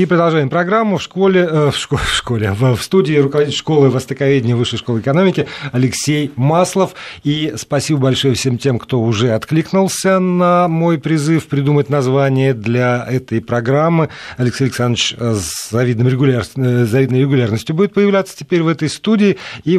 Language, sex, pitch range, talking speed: Russian, male, 115-150 Hz, 135 wpm